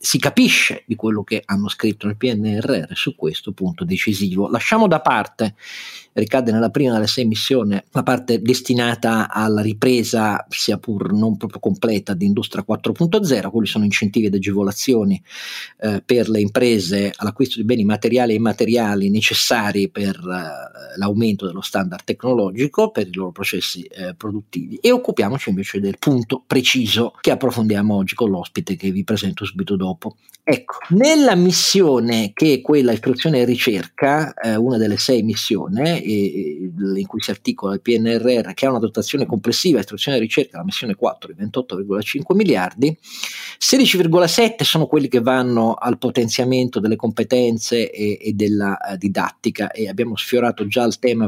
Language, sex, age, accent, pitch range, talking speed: Italian, male, 40-59, native, 105-145 Hz, 155 wpm